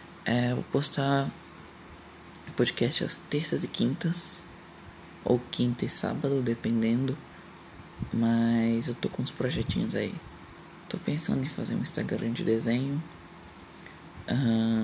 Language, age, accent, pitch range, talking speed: Portuguese, 20-39, Brazilian, 115-130 Hz, 115 wpm